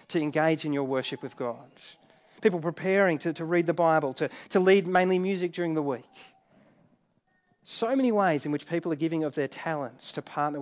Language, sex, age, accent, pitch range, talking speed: English, male, 30-49, Australian, 150-200 Hz, 200 wpm